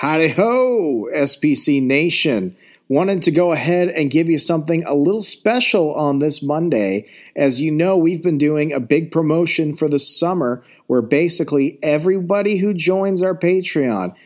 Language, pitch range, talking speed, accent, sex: English, 110-145 Hz, 150 wpm, American, male